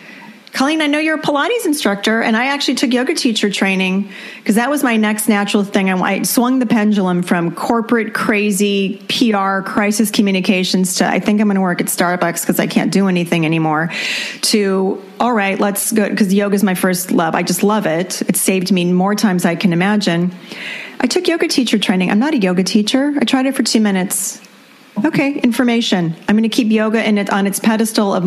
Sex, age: female, 30-49